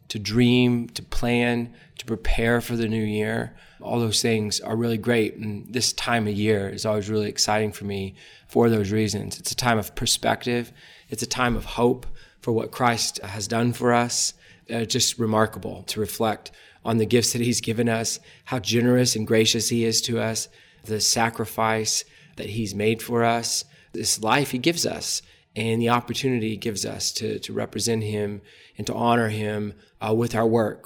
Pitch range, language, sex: 110-125 Hz, English, male